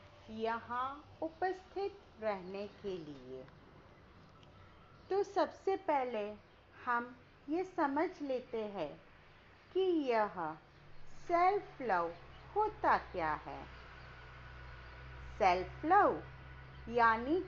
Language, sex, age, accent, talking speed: Hindi, female, 40-59, native, 80 wpm